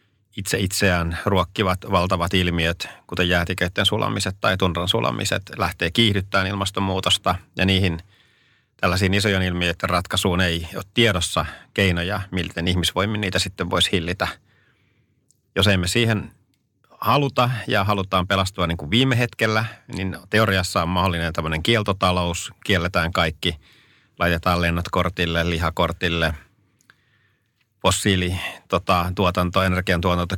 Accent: native